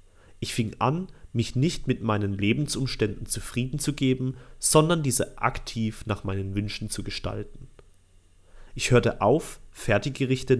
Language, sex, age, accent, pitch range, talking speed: German, male, 30-49, German, 100-130 Hz, 130 wpm